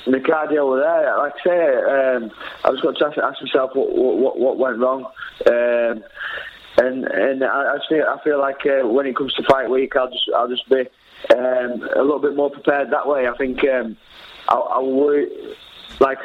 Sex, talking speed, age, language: male, 210 wpm, 20-39, English